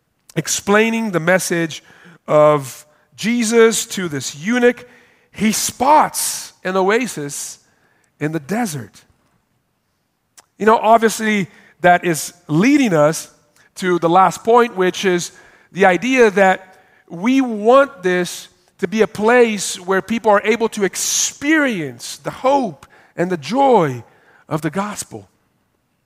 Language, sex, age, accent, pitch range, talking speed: English, male, 40-59, American, 170-225 Hz, 120 wpm